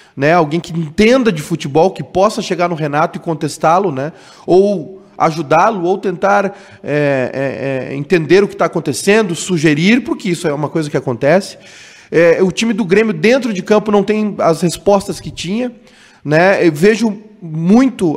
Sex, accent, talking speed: male, Brazilian, 170 wpm